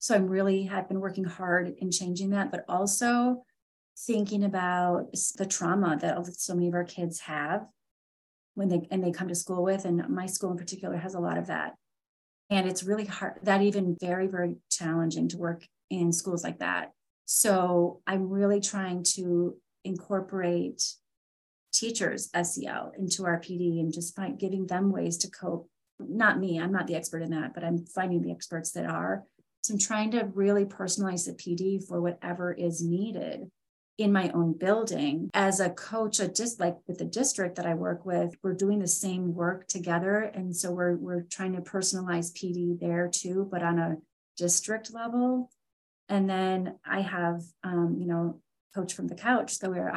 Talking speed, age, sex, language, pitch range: 185 wpm, 30-49, female, English, 175-195 Hz